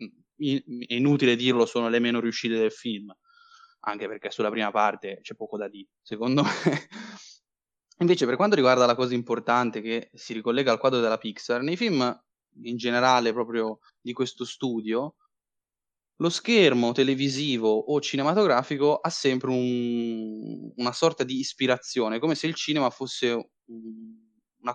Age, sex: 20-39, male